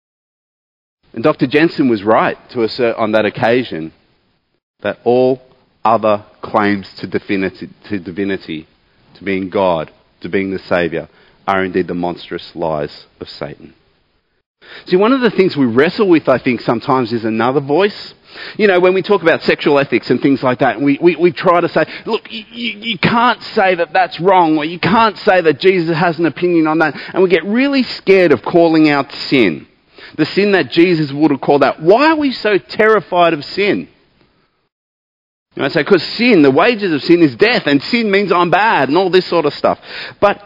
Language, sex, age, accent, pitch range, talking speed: English, male, 30-49, Australian, 125-190 Hz, 185 wpm